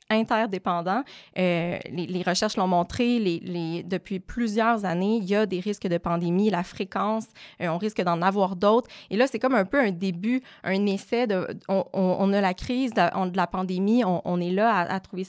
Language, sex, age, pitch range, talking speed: French, female, 20-39, 185-225 Hz, 220 wpm